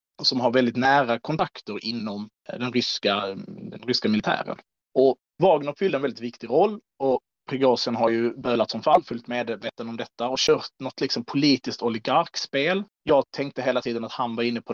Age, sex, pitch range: 30-49, male, 115-140 Hz